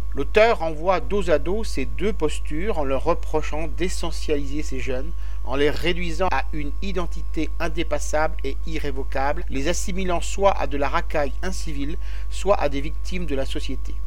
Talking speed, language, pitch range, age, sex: 160 wpm, French, 135-170 Hz, 50-69, male